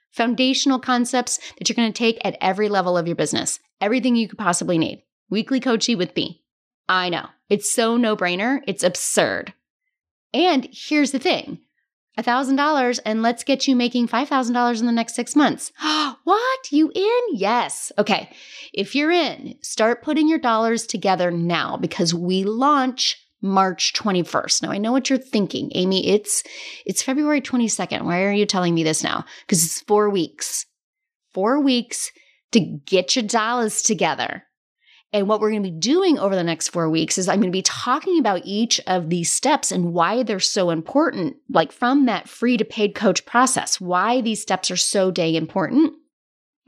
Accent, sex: American, female